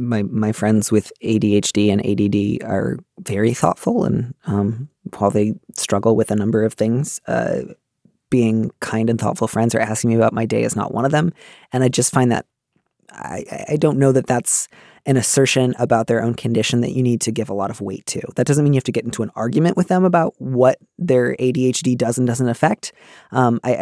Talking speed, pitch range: 215 wpm, 115-150 Hz